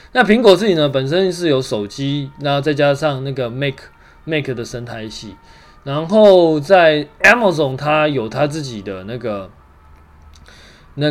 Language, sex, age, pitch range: Chinese, male, 20-39, 115-165 Hz